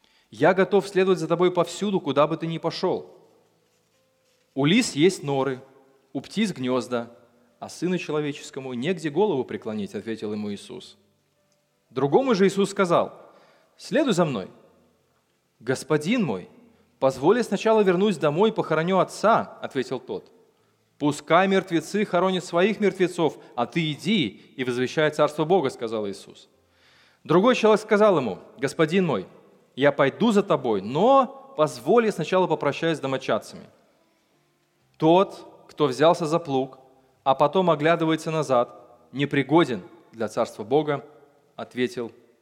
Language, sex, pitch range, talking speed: Russian, male, 130-190 Hz, 130 wpm